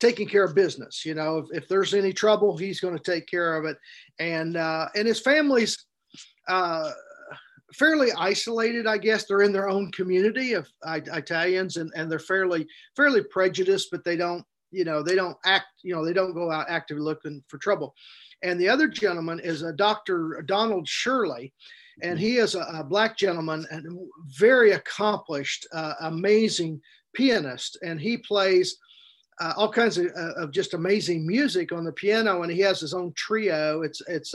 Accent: American